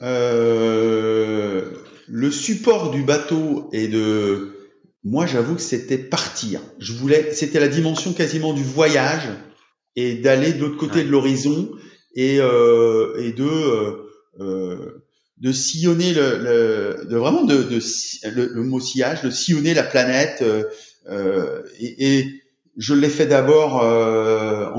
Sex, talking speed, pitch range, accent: male, 140 wpm, 120-170 Hz, French